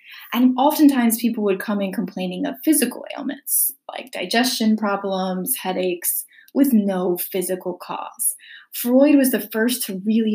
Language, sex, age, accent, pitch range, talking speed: English, female, 20-39, American, 190-260 Hz, 140 wpm